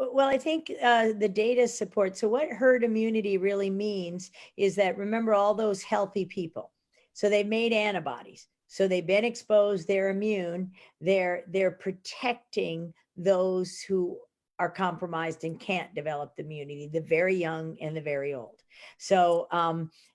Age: 50-69